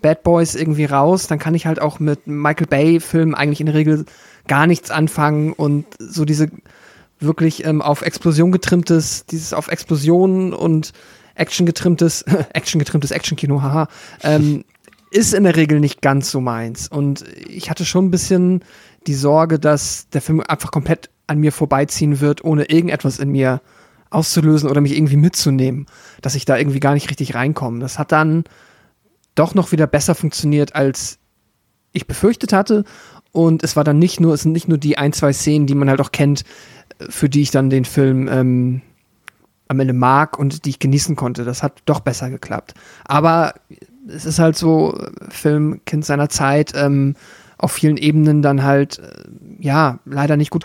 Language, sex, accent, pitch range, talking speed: German, male, German, 140-165 Hz, 180 wpm